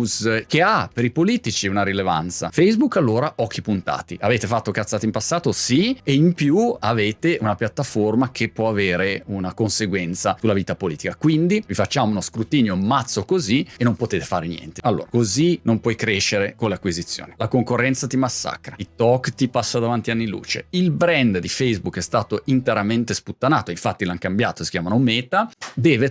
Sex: male